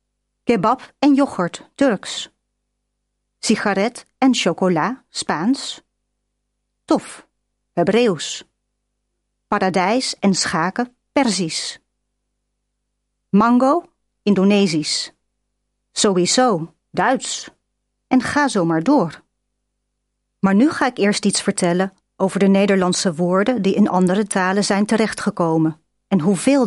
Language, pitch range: Spanish, 180-235 Hz